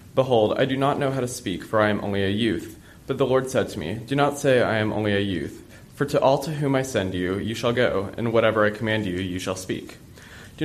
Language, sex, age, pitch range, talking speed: English, male, 20-39, 100-125 Hz, 270 wpm